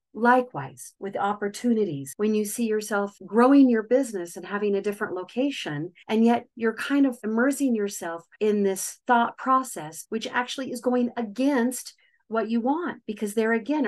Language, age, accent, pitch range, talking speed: English, 40-59, American, 190-240 Hz, 160 wpm